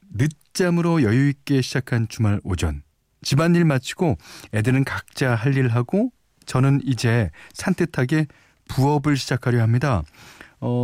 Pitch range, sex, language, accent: 105-150 Hz, male, Korean, native